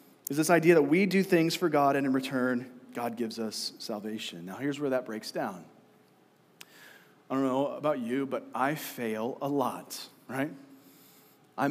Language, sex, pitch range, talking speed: English, male, 135-175 Hz, 175 wpm